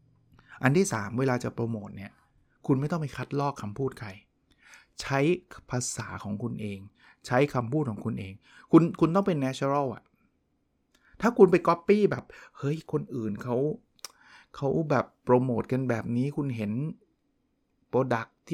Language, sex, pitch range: Thai, male, 125-160 Hz